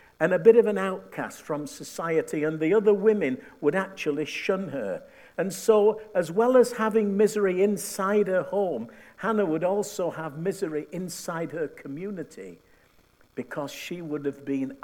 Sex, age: male, 60-79